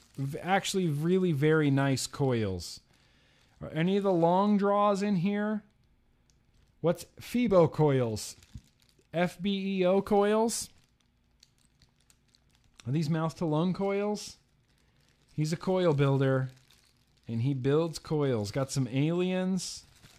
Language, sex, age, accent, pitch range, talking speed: English, male, 40-59, American, 130-185 Hz, 105 wpm